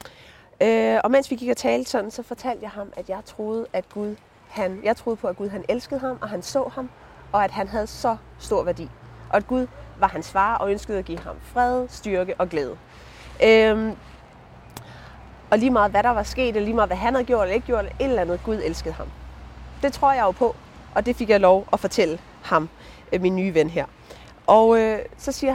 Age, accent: 30-49, native